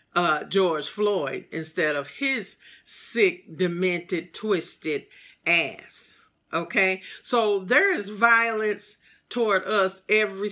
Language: English